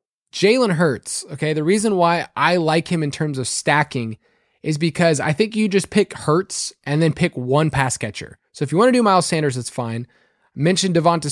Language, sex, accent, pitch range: English, male, American, 135-175 Hz